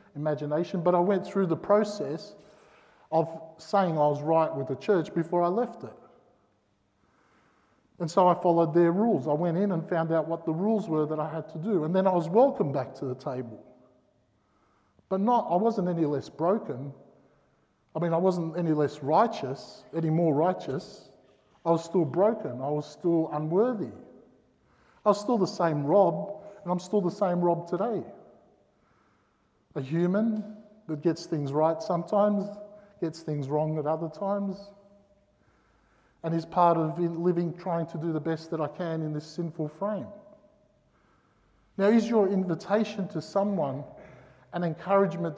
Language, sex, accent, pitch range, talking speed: English, male, Australian, 155-200 Hz, 165 wpm